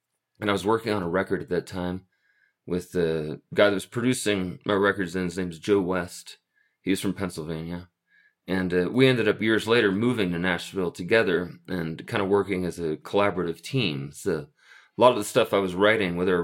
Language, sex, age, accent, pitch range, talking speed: English, male, 30-49, American, 90-105 Hz, 210 wpm